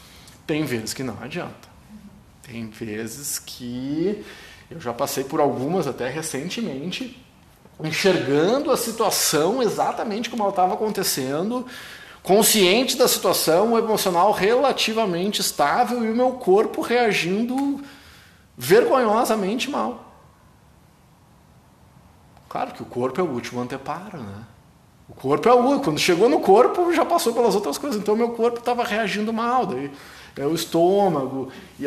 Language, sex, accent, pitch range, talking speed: Portuguese, male, Brazilian, 130-210 Hz, 135 wpm